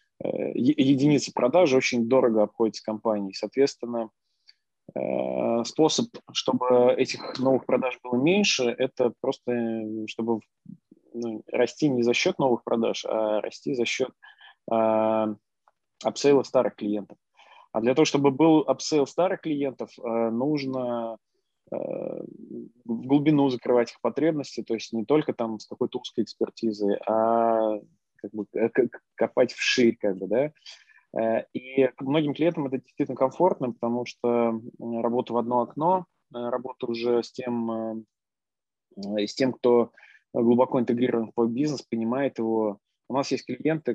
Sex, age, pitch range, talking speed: male, 20-39, 115-135 Hz, 125 wpm